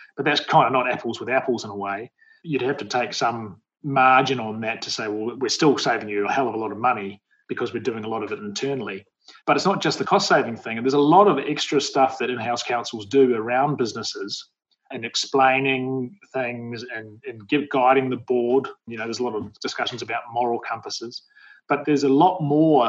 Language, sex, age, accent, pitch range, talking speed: English, male, 30-49, Australian, 120-150 Hz, 225 wpm